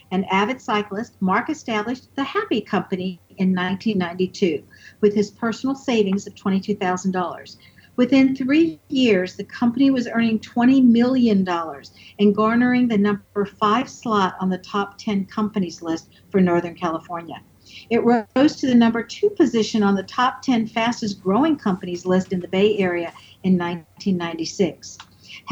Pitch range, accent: 185-235 Hz, American